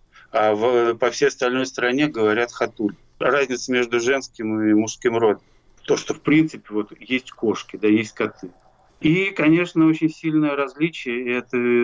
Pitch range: 105-130 Hz